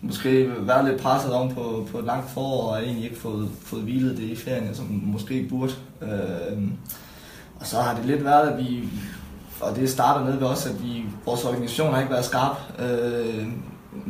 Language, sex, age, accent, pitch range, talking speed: Danish, male, 20-39, native, 110-130 Hz, 190 wpm